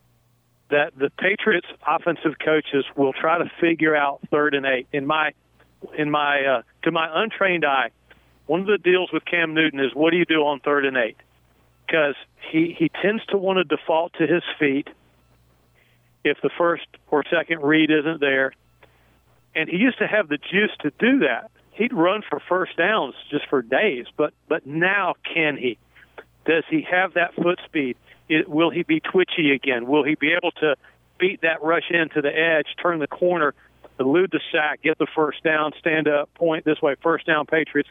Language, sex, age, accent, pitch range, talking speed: English, male, 50-69, American, 145-170 Hz, 190 wpm